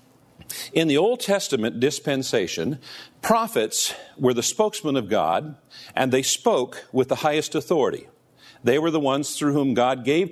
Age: 50-69